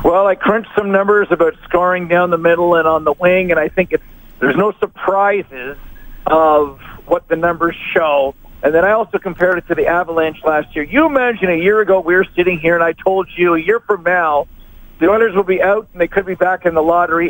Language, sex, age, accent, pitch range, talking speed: English, male, 50-69, American, 170-210 Hz, 230 wpm